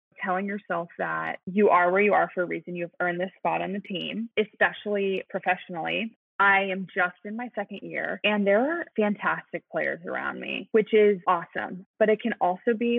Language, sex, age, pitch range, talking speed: English, female, 20-39, 180-230 Hz, 195 wpm